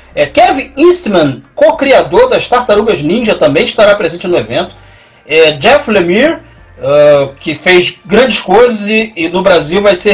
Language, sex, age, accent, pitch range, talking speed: Portuguese, male, 30-49, Brazilian, 155-210 Hz, 155 wpm